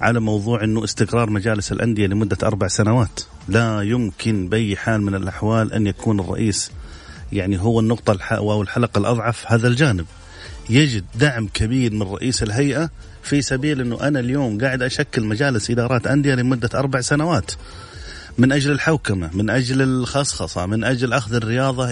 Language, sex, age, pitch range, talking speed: English, male, 30-49, 105-135 Hz, 150 wpm